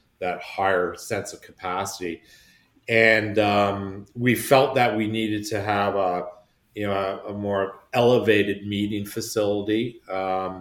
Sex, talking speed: male, 135 wpm